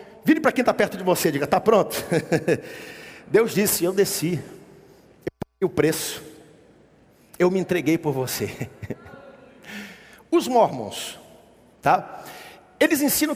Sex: male